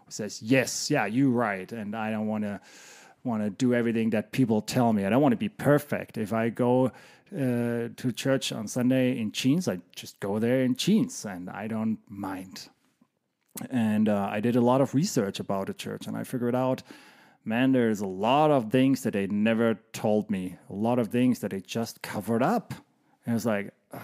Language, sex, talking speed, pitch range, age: English, male, 205 wpm, 110-130 Hz, 30-49